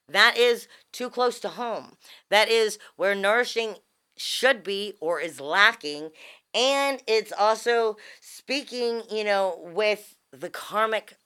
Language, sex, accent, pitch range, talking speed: English, female, American, 160-220 Hz, 130 wpm